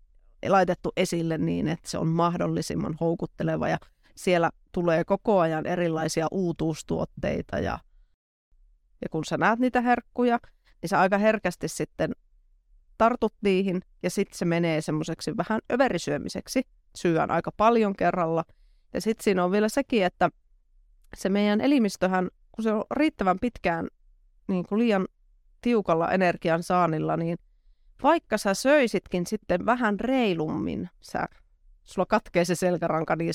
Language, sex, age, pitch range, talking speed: Finnish, female, 30-49, 165-220 Hz, 135 wpm